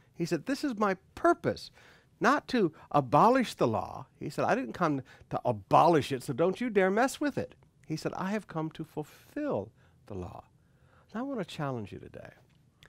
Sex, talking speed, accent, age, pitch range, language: male, 195 wpm, American, 60-79, 120-155 Hz, English